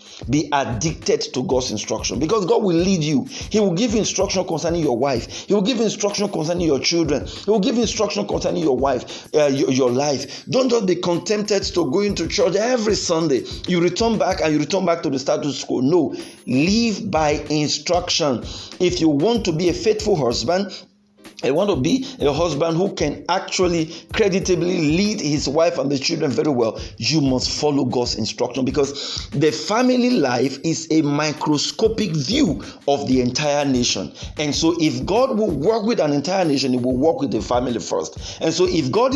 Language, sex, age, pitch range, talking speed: English, male, 50-69, 145-200 Hz, 190 wpm